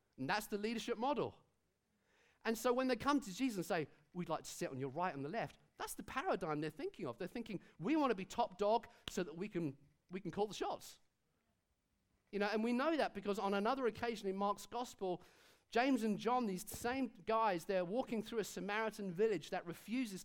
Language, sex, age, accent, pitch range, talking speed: English, male, 40-59, British, 185-235 Hz, 220 wpm